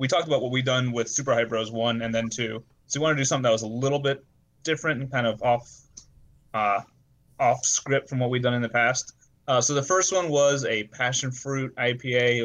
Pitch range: 115-135 Hz